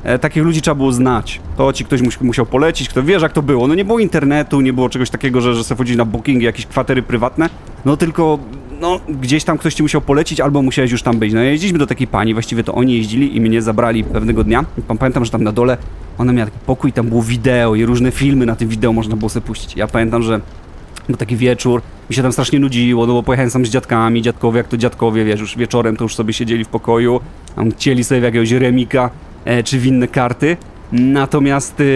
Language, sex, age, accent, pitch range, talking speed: Polish, male, 30-49, native, 115-135 Hz, 230 wpm